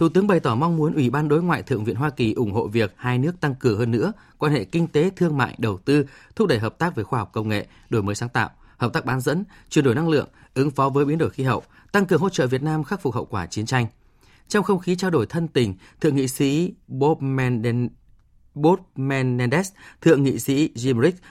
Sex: male